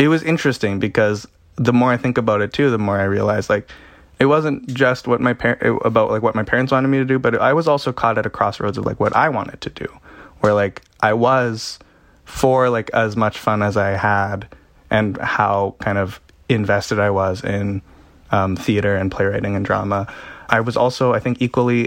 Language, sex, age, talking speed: English, male, 20-39, 215 wpm